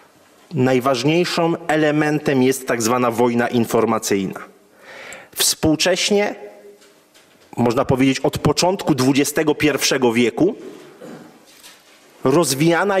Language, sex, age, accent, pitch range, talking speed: Polish, male, 30-49, native, 140-180 Hz, 65 wpm